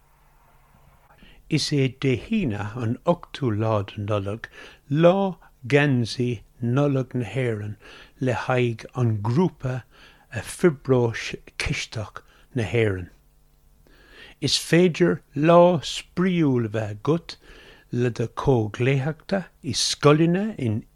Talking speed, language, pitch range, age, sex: 85 wpm, English, 110-155 Hz, 60-79, male